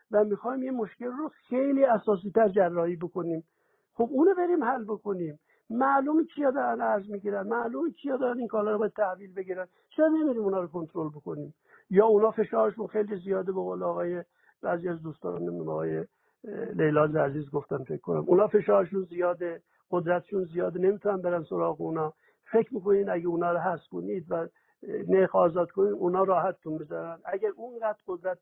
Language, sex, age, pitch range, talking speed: Persian, male, 60-79, 175-225 Hz, 165 wpm